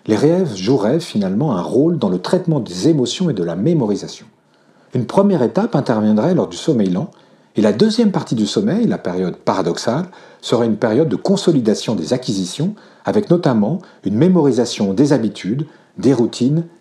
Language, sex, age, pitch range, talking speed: French, male, 40-59, 115-180 Hz, 170 wpm